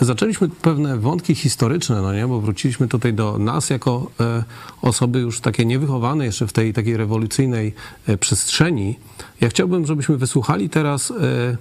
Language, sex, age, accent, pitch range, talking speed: Polish, male, 40-59, native, 115-145 Hz, 140 wpm